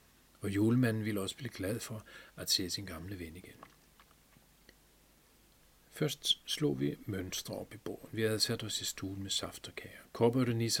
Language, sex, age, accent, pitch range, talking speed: Danish, male, 40-59, native, 90-110 Hz, 160 wpm